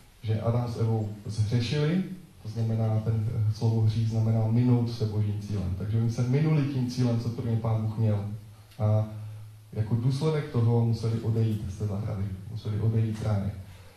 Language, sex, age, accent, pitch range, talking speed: Czech, male, 20-39, native, 105-120 Hz, 165 wpm